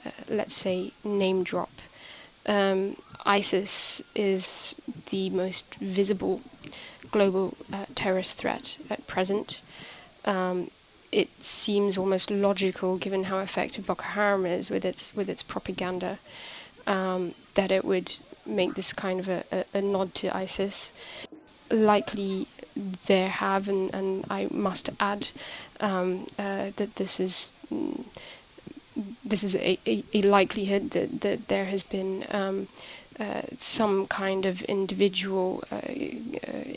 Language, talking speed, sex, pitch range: English, 130 wpm, female, 185-205 Hz